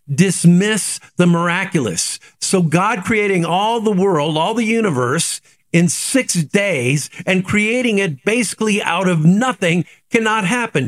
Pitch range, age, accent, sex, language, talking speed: 155-195 Hz, 50-69, American, male, English, 130 wpm